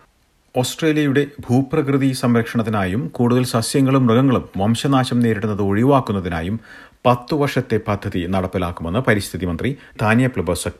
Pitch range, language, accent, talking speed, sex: 95-130 Hz, Malayalam, native, 95 wpm, male